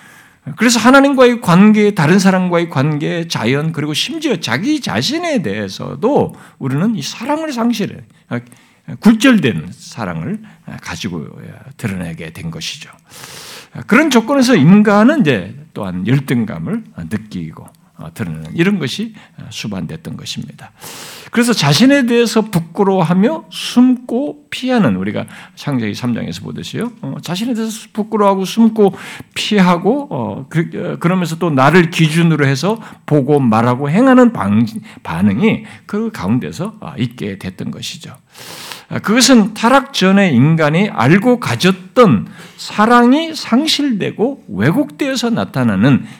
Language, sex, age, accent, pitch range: Korean, male, 50-69, native, 150-230 Hz